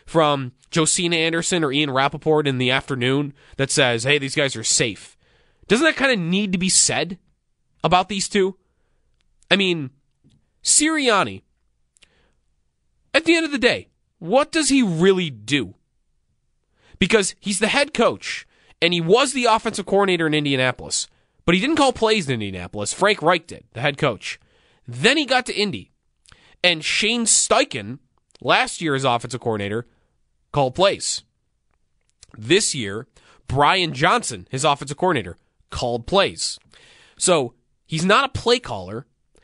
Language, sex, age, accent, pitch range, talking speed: English, male, 30-49, American, 120-185 Hz, 145 wpm